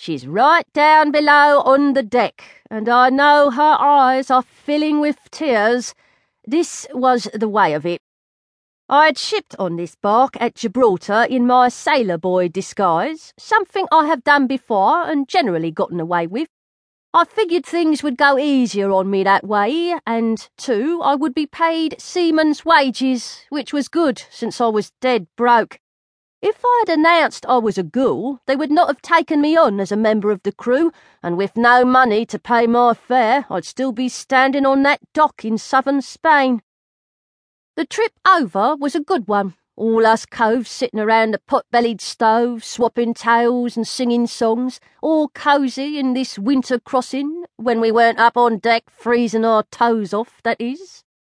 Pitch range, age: 225-295 Hz, 40-59